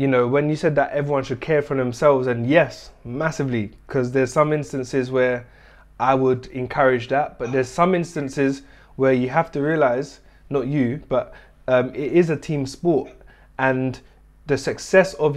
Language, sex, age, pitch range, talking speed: English, male, 20-39, 130-155 Hz, 175 wpm